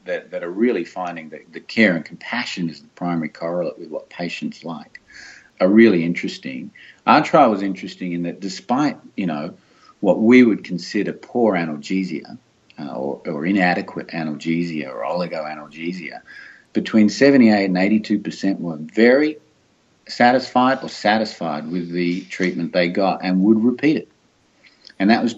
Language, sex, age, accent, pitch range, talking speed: English, male, 50-69, Australian, 85-110 Hz, 145 wpm